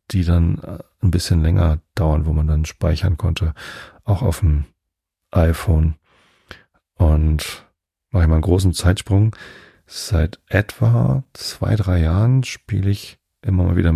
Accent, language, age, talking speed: German, German, 40-59, 140 wpm